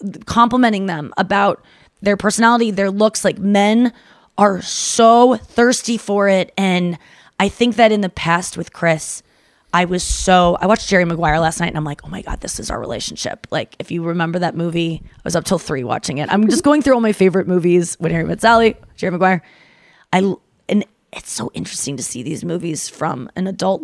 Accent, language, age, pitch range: American, English, 20-39, 180-230 Hz